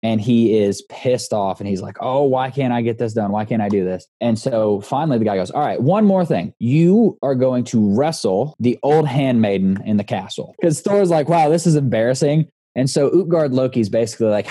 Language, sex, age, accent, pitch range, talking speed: English, male, 20-39, American, 105-135 Hz, 225 wpm